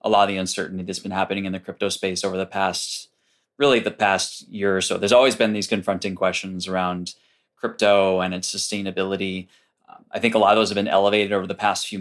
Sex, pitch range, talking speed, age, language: male, 95-110 Hz, 230 wpm, 20-39, English